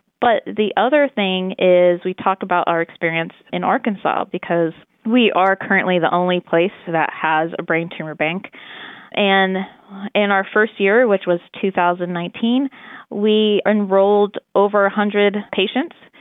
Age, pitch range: 20-39, 180-215 Hz